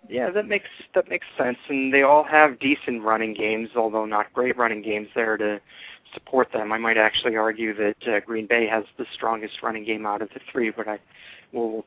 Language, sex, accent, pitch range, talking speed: English, male, American, 110-125 Hz, 215 wpm